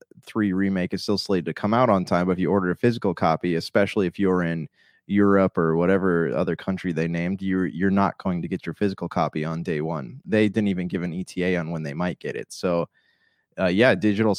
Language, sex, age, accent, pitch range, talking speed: English, male, 20-39, American, 90-100 Hz, 235 wpm